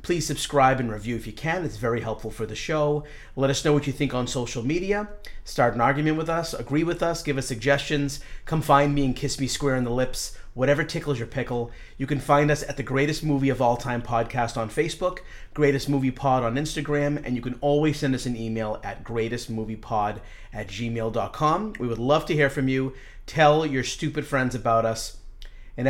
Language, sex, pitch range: English, male, 120-145 Hz